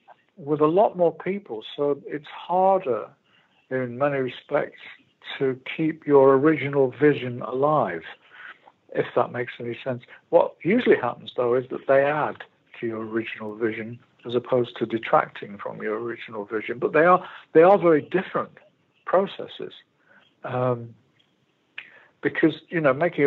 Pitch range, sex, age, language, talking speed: 125-160 Hz, male, 60-79, English, 140 wpm